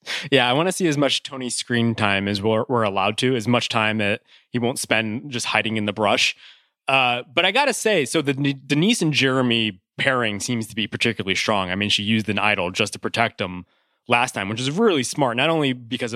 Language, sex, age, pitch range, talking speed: English, male, 20-39, 110-135 Hz, 235 wpm